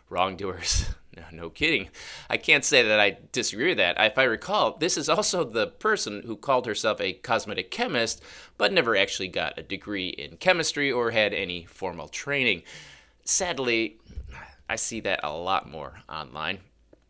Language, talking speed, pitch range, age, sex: English, 165 wpm, 90-135 Hz, 30-49, male